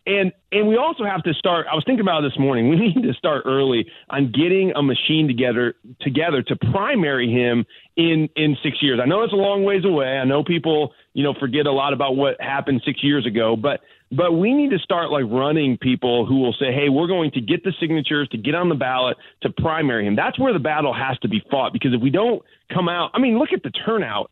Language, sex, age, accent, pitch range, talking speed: English, male, 30-49, American, 130-180 Hz, 245 wpm